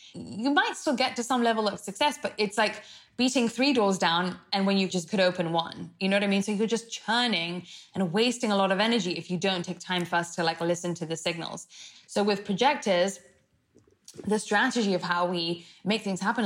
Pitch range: 175-215 Hz